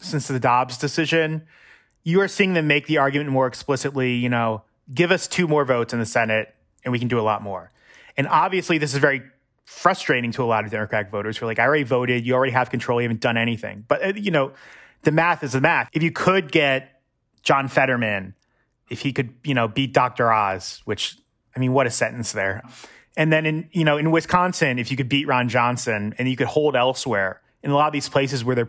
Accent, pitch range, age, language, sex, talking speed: American, 115-150 Hz, 30-49, English, male, 230 wpm